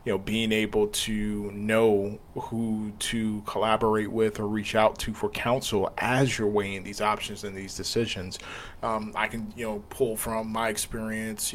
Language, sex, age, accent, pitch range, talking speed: English, male, 20-39, American, 105-110 Hz, 170 wpm